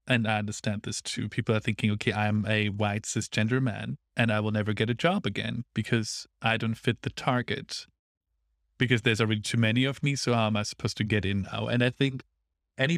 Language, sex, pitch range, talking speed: English, male, 100-120 Hz, 220 wpm